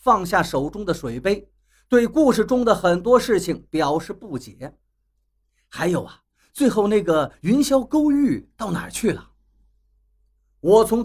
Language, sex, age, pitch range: Chinese, male, 50-69, 150-245 Hz